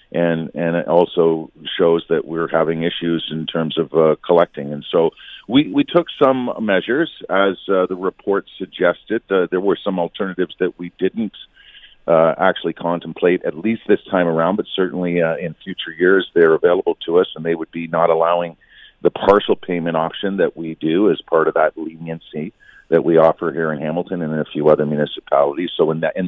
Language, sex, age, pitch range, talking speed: English, male, 50-69, 80-90 Hz, 195 wpm